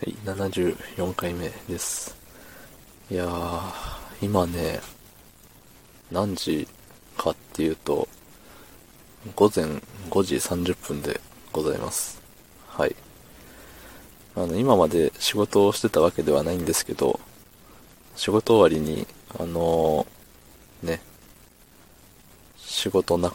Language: Japanese